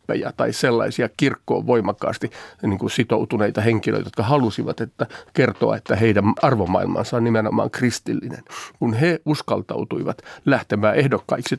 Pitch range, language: 110-155 Hz, Finnish